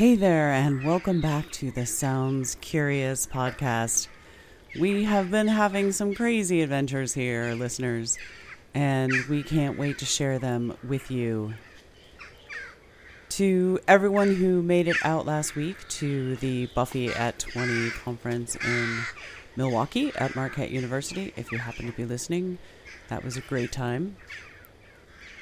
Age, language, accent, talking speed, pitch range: 30-49, English, American, 135 wpm, 125-175 Hz